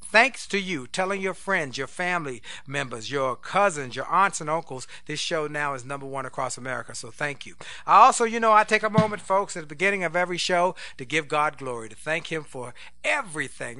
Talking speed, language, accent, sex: 220 wpm, English, American, male